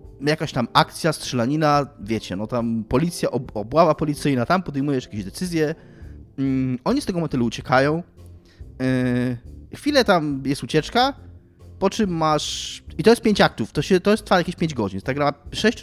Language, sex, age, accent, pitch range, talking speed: Polish, male, 20-39, native, 110-170 Hz, 170 wpm